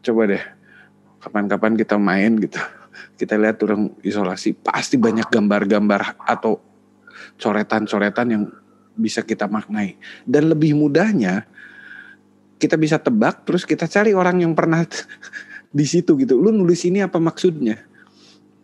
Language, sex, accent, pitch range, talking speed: Indonesian, male, native, 105-170 Hz, 125 wpm